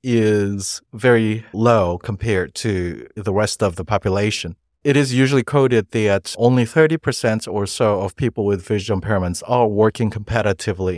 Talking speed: 150 wpm